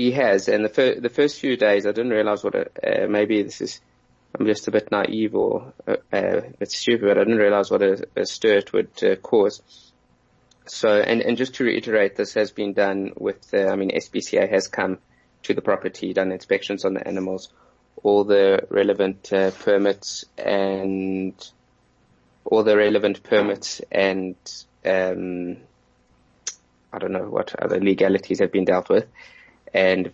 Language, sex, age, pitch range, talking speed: English, male, 20-39, 95-105 Hz, 175 wpm